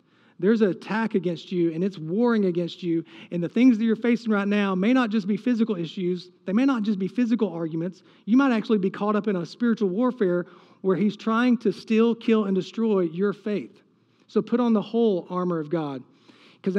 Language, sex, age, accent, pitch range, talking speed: English, male, 40-59, American, 180-225 Hz, 215 wpm